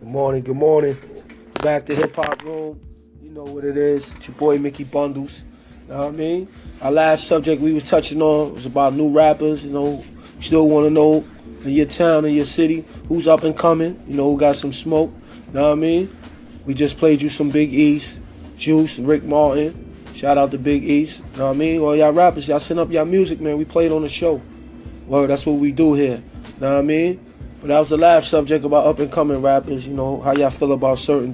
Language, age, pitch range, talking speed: English, 20-39, 140-165 Hz, 230 wpm